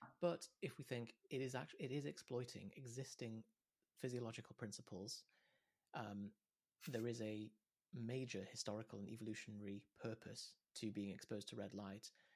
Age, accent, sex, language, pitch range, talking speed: 30-49, British, male, English, 105-125 Hz, 135 wpm